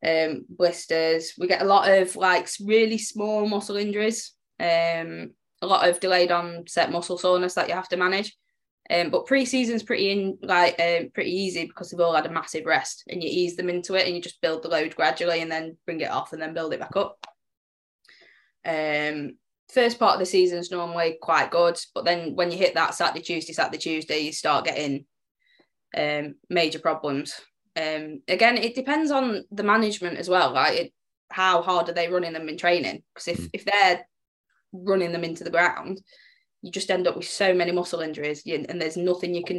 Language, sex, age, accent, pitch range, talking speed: English, female, 10-29, British, 165-200 Hz, 205 wpm